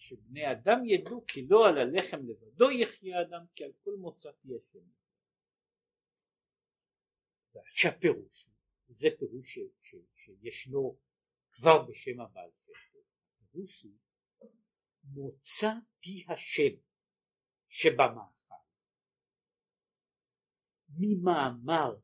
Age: 60-79